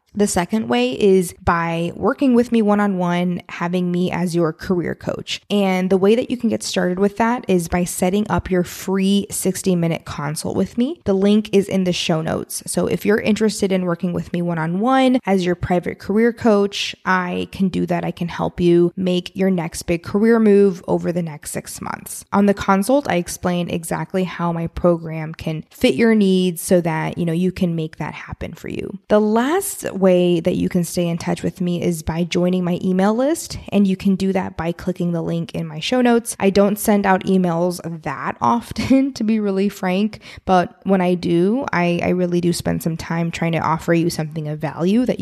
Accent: American